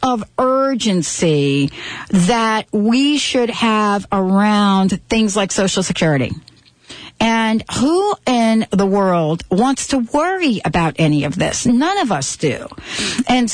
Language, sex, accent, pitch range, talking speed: English, female, American, 190-245 Hz, 125 wpm